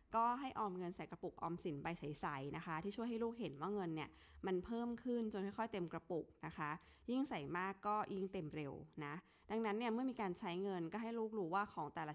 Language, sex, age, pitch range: Thai, female, 20-39, 165-210 Hz